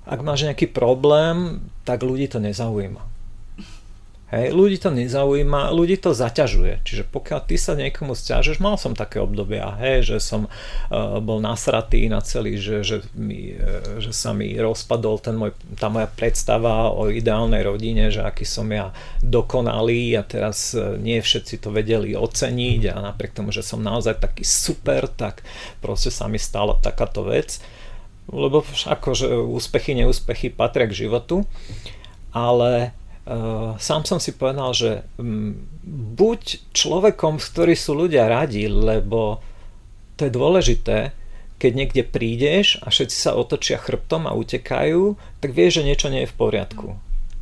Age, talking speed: 40-59, 150 wpm